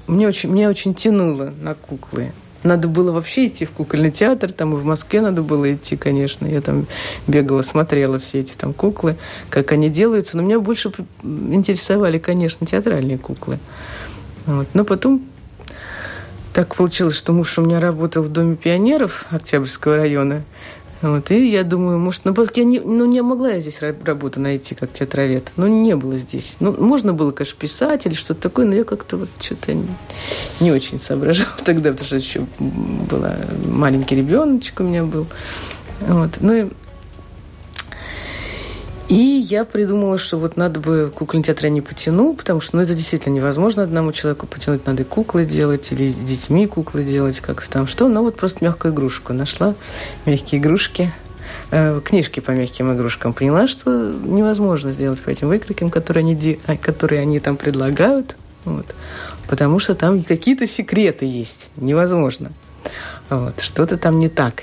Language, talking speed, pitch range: Russian, 160 wpm, 135-190 Hz